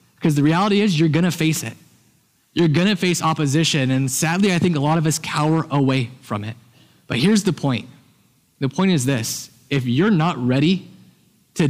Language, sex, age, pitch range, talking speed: English, male, 20-39, 145-185 Hz, 200 wpm